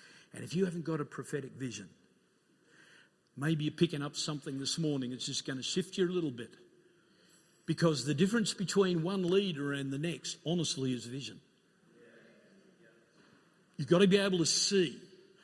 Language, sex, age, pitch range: English, male, 50-69, 155-200 Hz